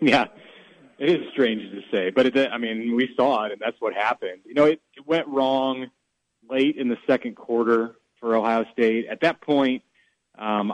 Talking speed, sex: 195 wpm, male